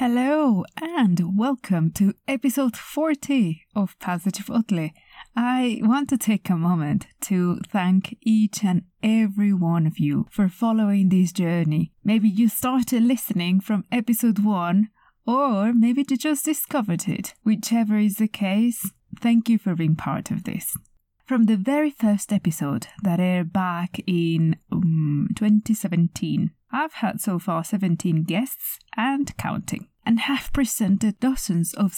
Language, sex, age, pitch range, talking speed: English, female, 20-39, 180-230 Hz, 145 wpm